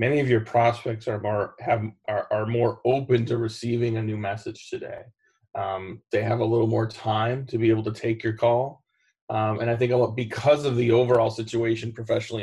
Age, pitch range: 30-49, 110-125 Hz